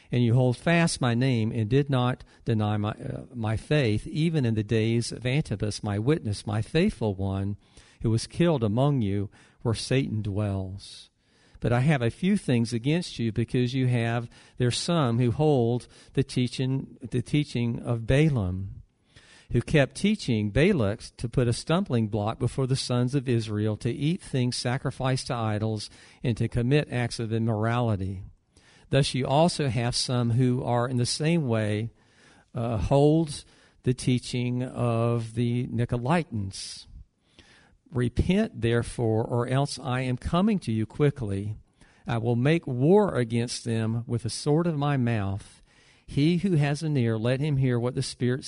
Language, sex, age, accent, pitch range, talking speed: English, male, 50-69, American, 115-140 Hz, 160 wpm